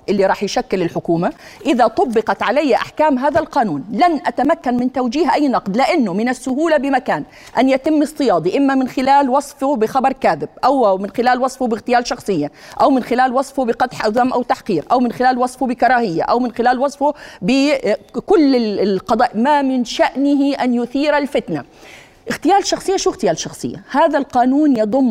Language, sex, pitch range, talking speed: Arabic, female, 225-290 Hz, 160 wpm